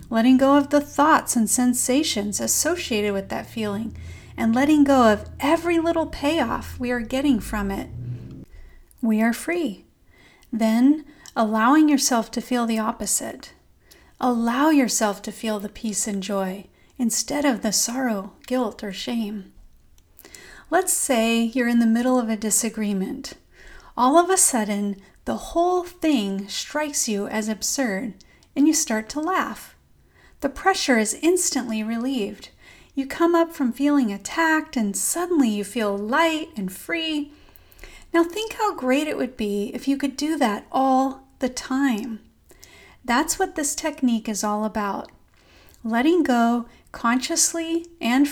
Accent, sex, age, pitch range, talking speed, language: American, female, 40-59, 220-295 Hz, 145 wpm, English